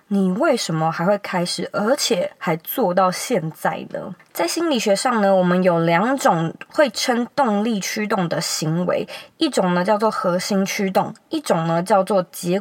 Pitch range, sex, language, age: 180-250 Hz, female, Chinese, 20-39